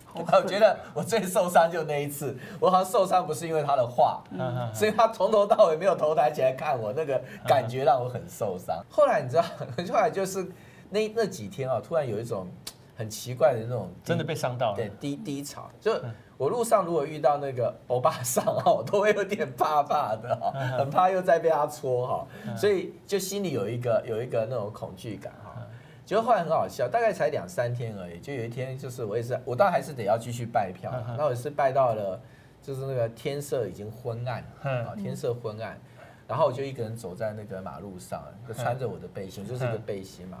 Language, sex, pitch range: Chinese, male, 120-185 Hz